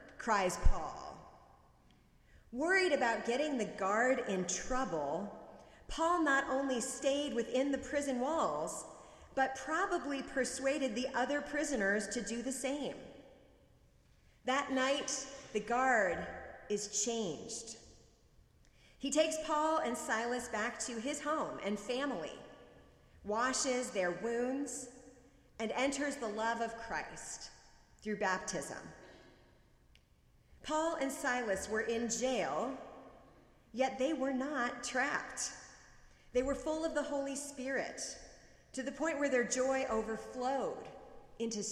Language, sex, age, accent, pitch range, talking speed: English, female, 30-49, American, 225-275 Hz, 115 wpm